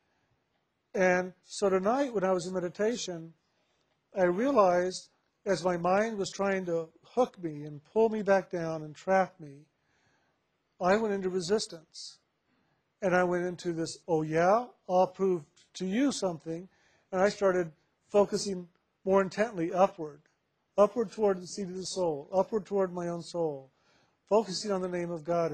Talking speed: 155 wpm